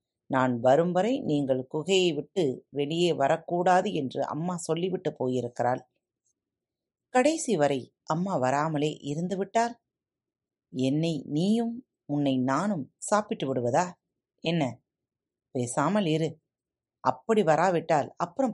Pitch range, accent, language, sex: 130-180 Hz, native, Tamil, female